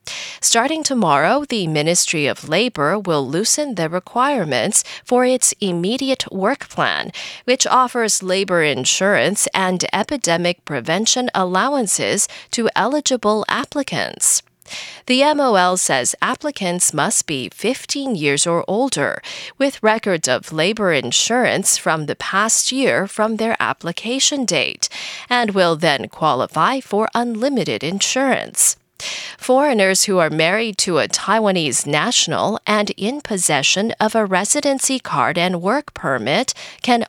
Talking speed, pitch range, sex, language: 120 wpm, 180-255 Hz, female, English